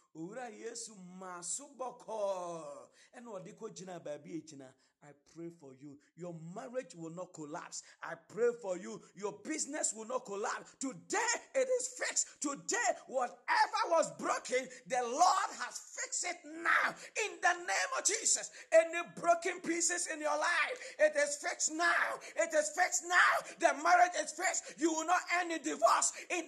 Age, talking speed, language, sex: 40-59, 160 wpm, English, male